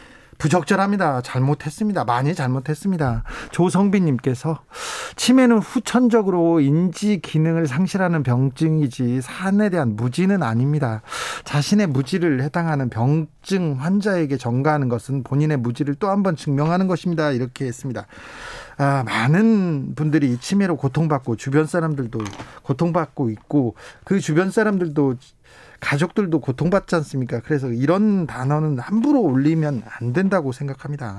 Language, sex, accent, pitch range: Korean, male, native, 135-195 Hz